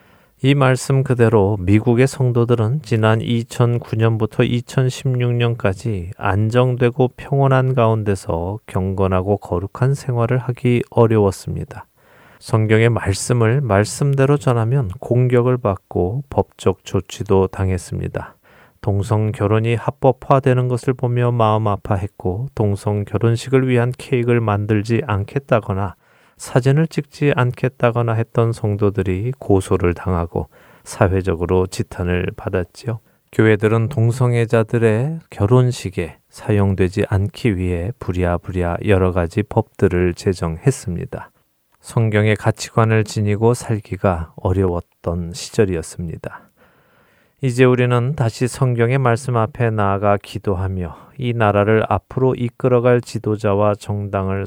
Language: Korean